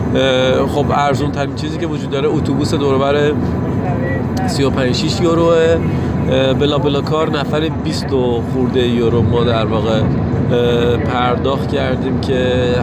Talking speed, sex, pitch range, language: 110 wpm, male, 115-130 Hz, Persian